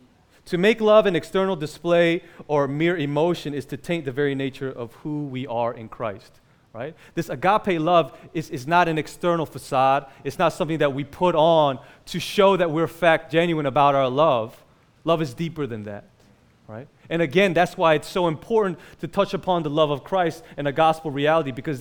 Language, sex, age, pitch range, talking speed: English, male, 30-49, 145-175 Hz, 200 wpm